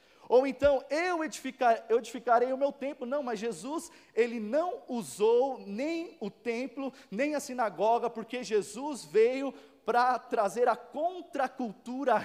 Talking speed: 130 wpm